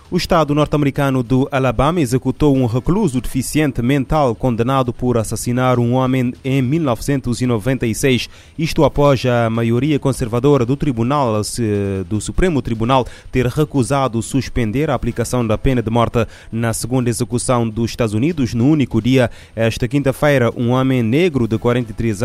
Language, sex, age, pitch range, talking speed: Portuguese, male, 20-39, 115-135 Hz, 140 wpm